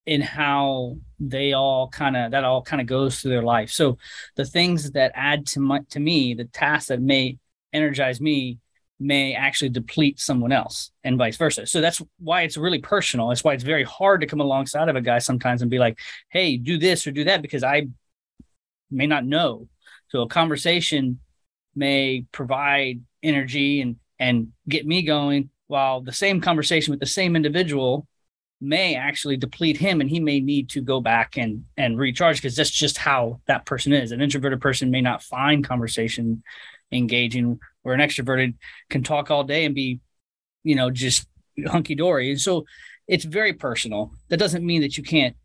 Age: 30-49